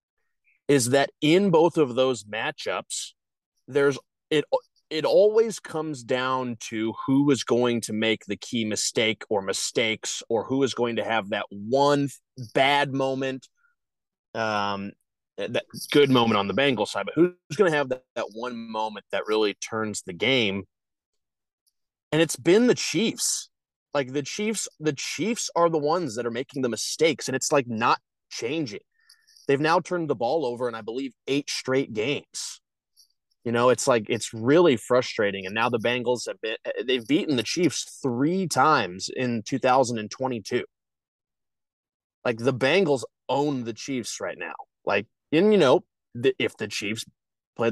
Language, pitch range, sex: English, 115-150 Hz, male